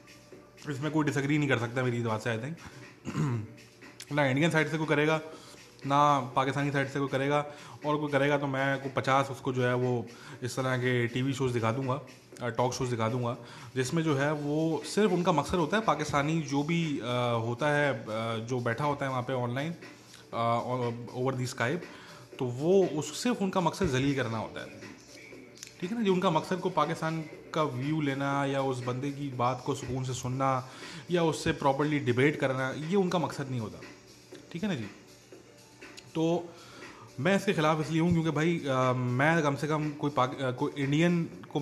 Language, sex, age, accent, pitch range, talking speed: English, male, 20-39, Indian, 125-155 Hz, 165 wpm